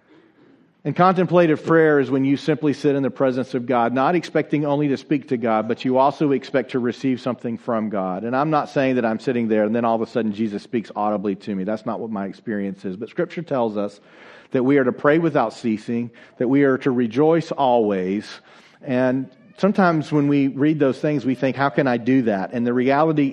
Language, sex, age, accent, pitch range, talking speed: English, male, 40-59, American, 120-150 Hz, 225 wpm